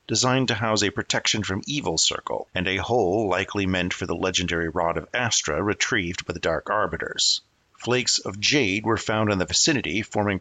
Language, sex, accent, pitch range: English, male, American, 90-120 Hz